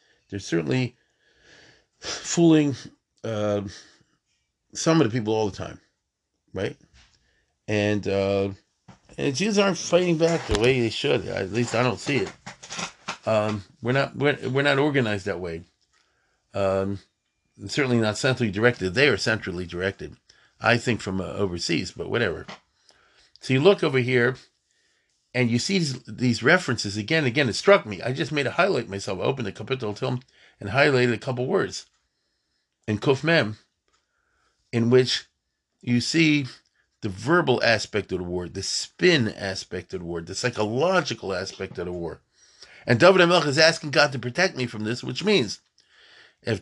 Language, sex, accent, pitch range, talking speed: English, male, American, 105-140 Hz, 160 wpm